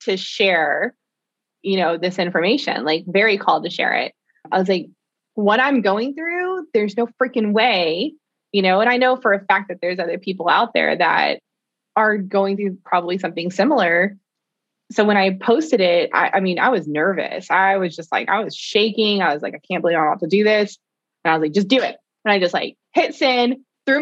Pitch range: 170-210 Hz